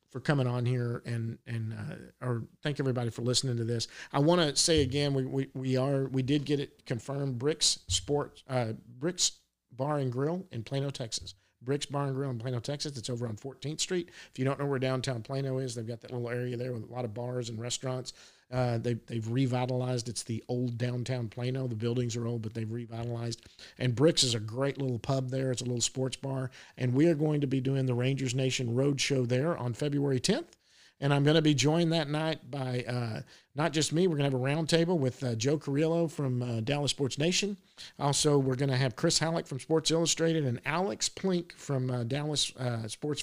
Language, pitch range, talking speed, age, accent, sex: English, 125-150 Hz, 220 wpm, 50-69, American, male